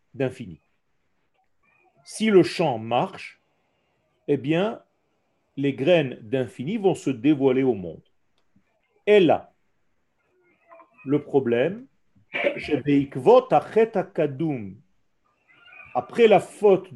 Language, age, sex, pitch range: French, 40-59, male, 140-210 Hz